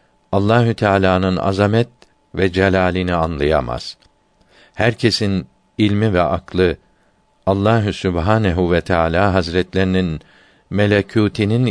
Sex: male